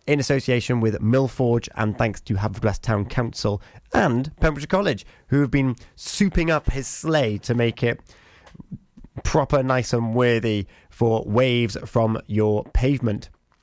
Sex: male